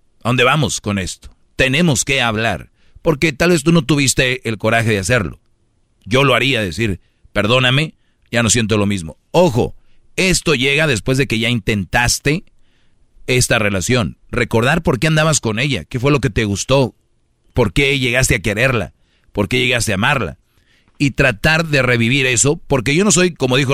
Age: 40-59